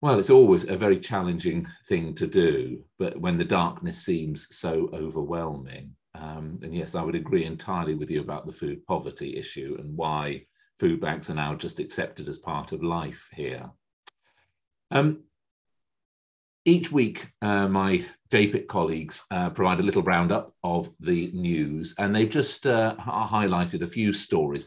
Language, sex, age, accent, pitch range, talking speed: English, male, 40-59, British, 80-110 Hz, 160 wpm